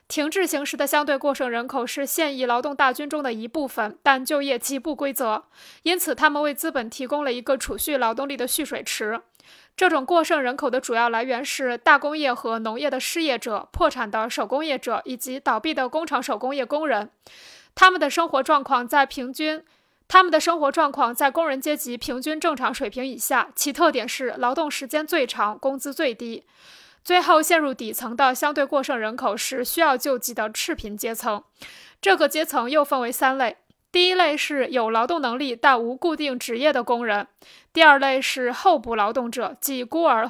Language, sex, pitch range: Chinese, female, 245-300 Hz